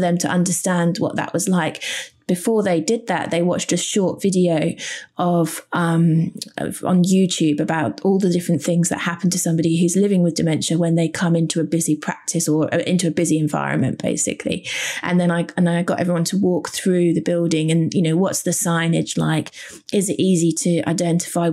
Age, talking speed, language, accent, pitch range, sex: 20-39, 195 wpm, English, British, 165-190 Hz, female